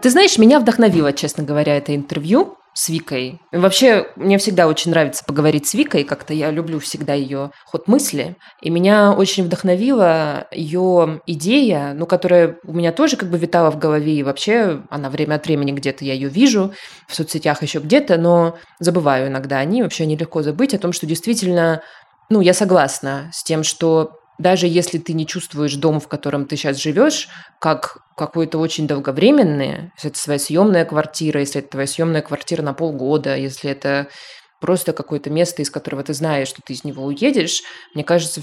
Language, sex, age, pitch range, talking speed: Russian, female, 20-39, 145-180 Hz, 185 wpm